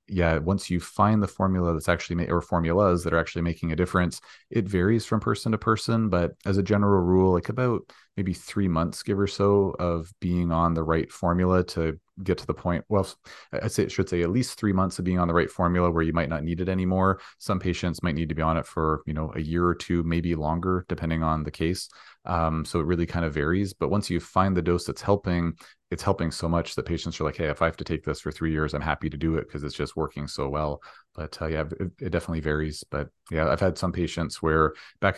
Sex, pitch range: male, 80-90 Hz